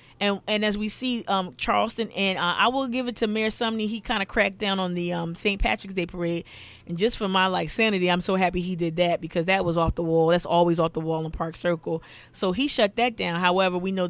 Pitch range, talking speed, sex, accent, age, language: 170-215 Hz, 265 wpm, female, American, 20-39, English